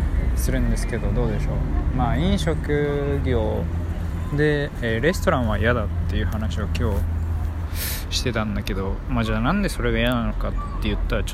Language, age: Japanese, 20-39